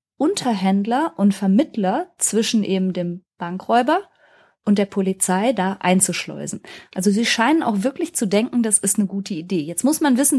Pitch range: 185-230 Hz